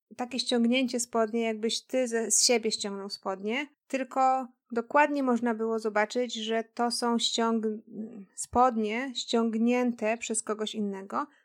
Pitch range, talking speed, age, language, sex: 220-255 Hz, 115 wpm, 30-49, Polish, female